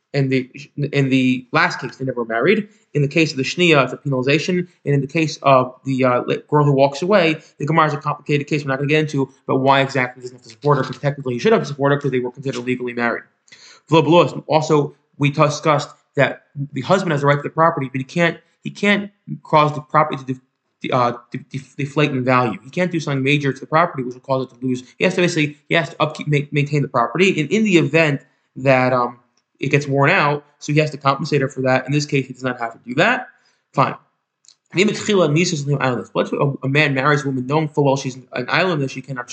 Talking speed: 245 wpm